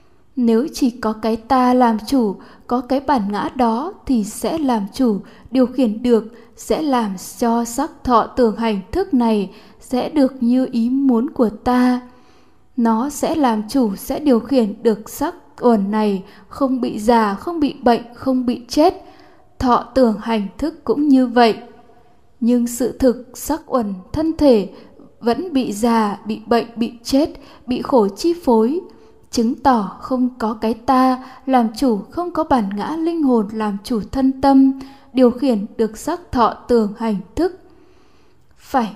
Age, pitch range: 10-29, 230-270 Hz